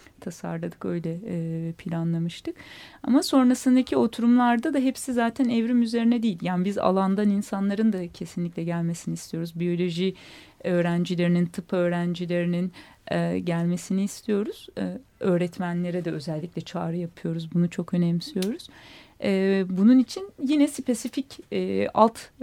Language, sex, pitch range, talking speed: Turkish, female, 175-220 Hz, 105 wpm